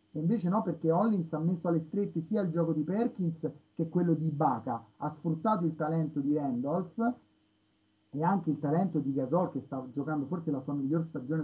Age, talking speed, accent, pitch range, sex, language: 30-49, 200 wpm, native, 145-180 Hz, male, Italian